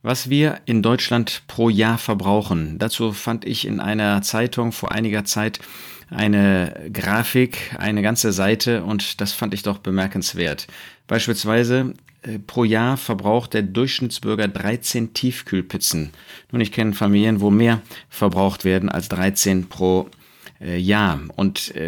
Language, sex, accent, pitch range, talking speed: German, male, German, 100-120 Hz, 130 wpm